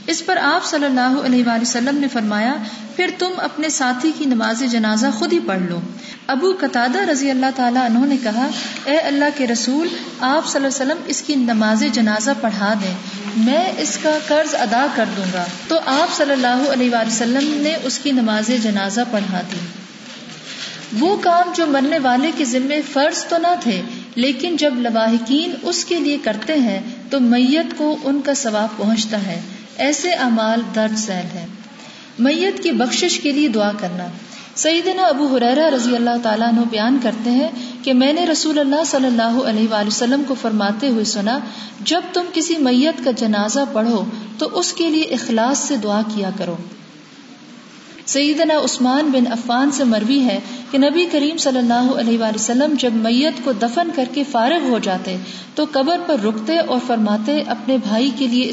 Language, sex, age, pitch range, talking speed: Urdu, female, 50-69, 225-295 Hz, 180 wpm